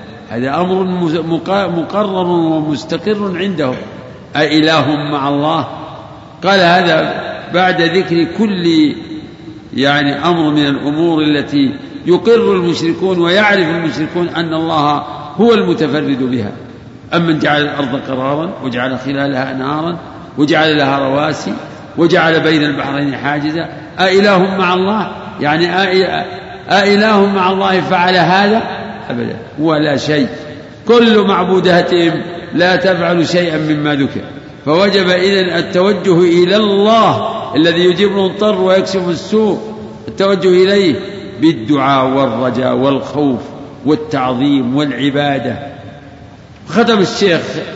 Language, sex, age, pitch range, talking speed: Arabic, male, 50-69, 145-185 Hz, 95 wpm